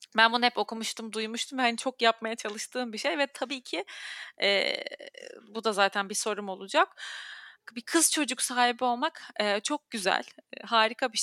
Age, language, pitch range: 30-49, Turkish, 215-260 Hz